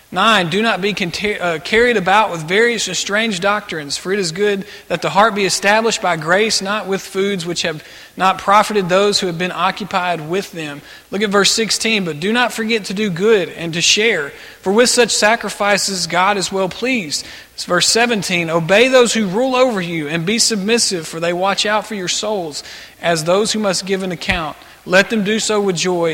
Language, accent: English, American